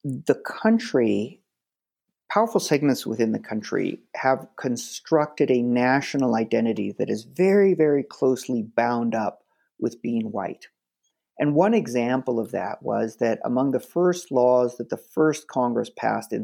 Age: 40-59